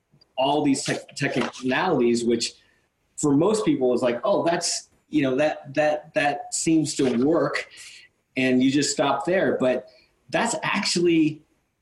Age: 30-49